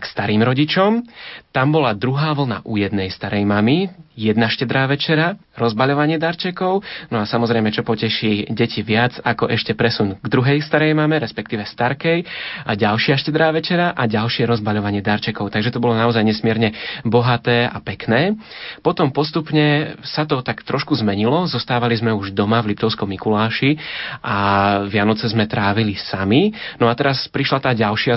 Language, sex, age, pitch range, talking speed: Slovak, male, 30-49, 110-130 Hz, 155 wpm